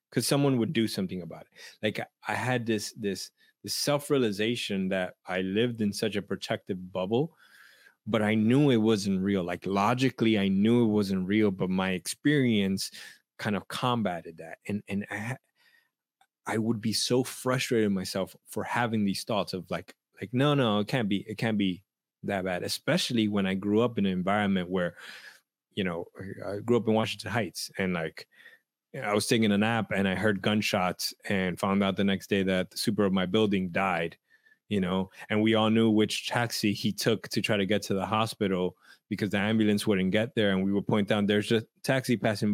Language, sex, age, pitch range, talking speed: English, male, 20-39, 100-120 Hz, 200 wpm